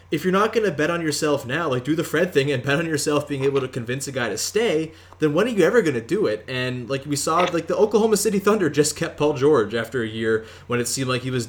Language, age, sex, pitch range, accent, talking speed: English, 20-39, male, 120-150 Hz, American, 300 wpm